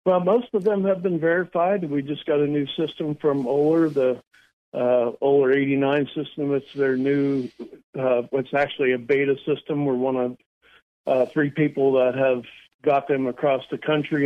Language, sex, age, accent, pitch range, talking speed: English, male, 50-69, American, 125-145 Hz, 180 wpm